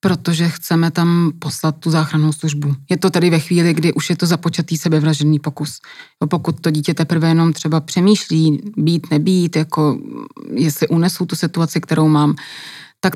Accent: native